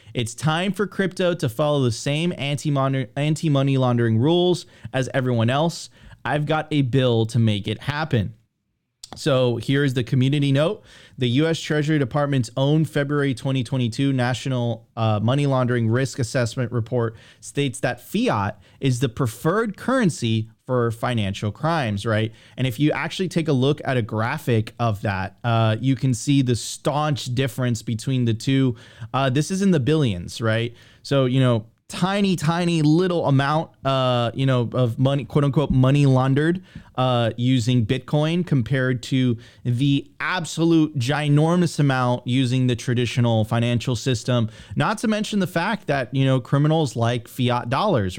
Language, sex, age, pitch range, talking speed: English, male, 30-49, 120-150 Hz, 155 wpm